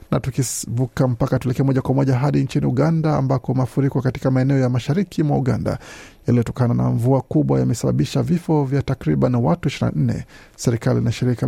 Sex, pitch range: male, 120-140 Hz